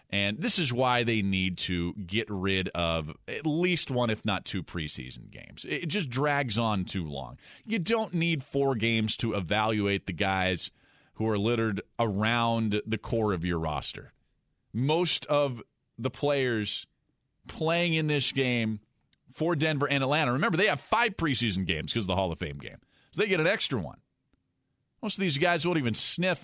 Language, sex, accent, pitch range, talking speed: English, male, American, 110-155 Hz, 180 wpm